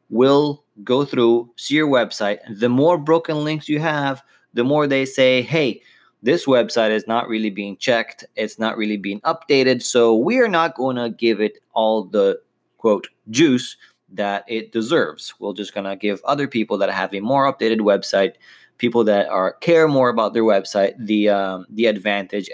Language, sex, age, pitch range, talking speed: English, male, 20-39, 105-130 Hz, 180 wpm